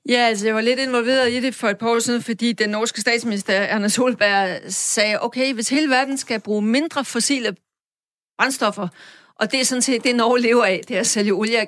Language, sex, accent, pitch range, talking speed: Danish, female, native, 200-250 Hz, 225 wpm